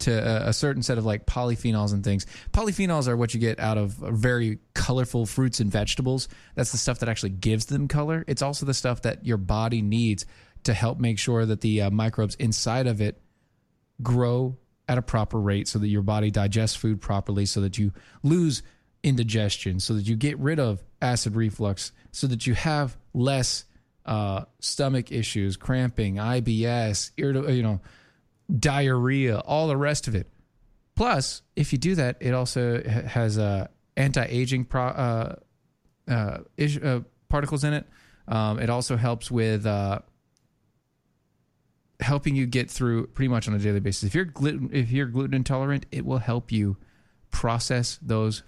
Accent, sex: American, male